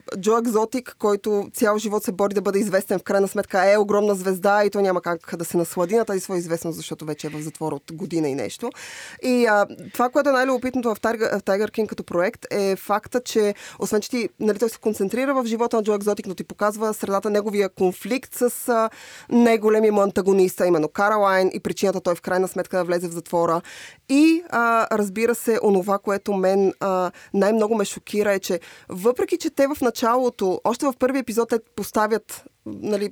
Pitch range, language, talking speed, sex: 190-225 Hz, Bulgarian, 205 wpm, female